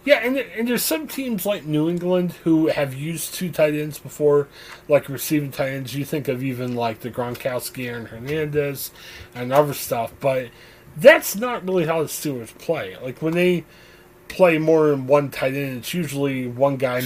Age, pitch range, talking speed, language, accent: 20-39, 130-185 Hz, 185 wpm, English, American